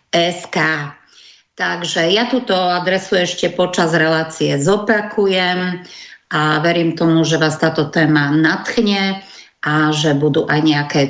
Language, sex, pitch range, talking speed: Slovak, female, 160-185 Hz, 120 wpm